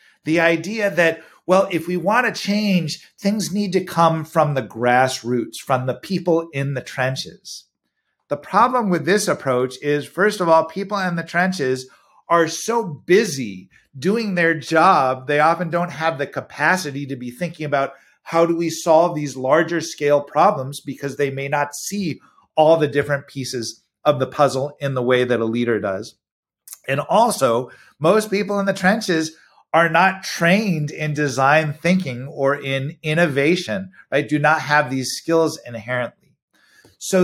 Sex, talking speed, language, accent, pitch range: male, 165 wpm, English, American, 135-180 Hz